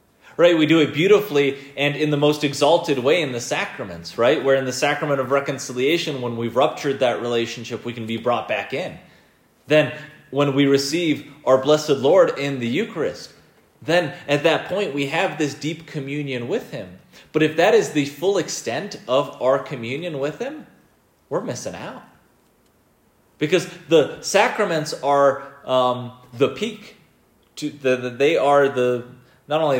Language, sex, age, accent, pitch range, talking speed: English, male, 30-49, American, 125-155 Hz, 165 wpm